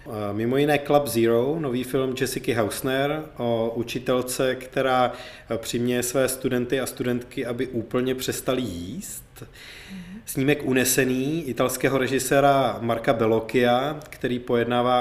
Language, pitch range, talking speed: Czech, 115-135 Hz, 110 wpm